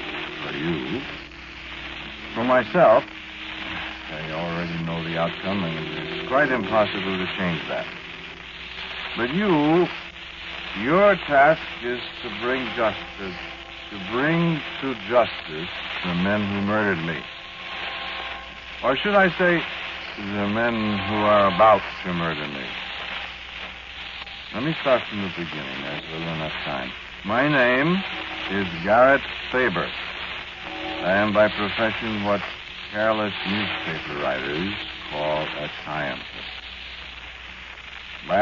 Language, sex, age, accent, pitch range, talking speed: English, male, 60-79, American, 75-115 Hz, 115 wpm